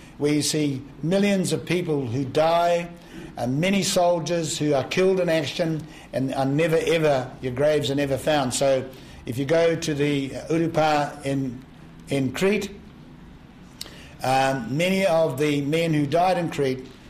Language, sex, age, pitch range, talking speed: English, male, 60-79, 135-165 Hz, 150 wpm